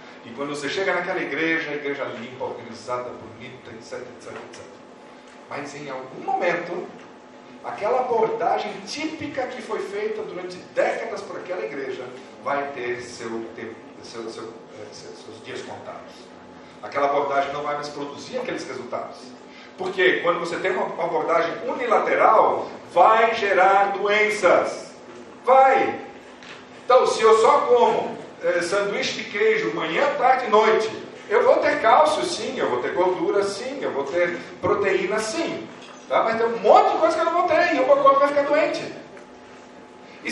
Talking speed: 150 wpm